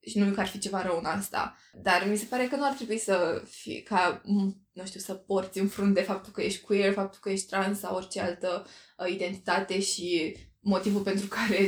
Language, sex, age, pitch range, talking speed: Romanian, female, 20-39, 190-220 Hz, 215 wpm